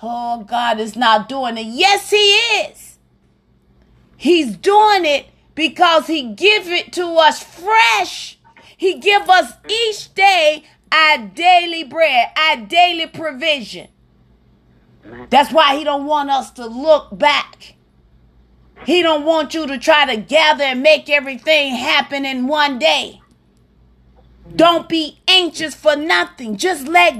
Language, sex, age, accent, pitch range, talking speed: English, female, 30-49, American, 225-335 Hz, 135 wpm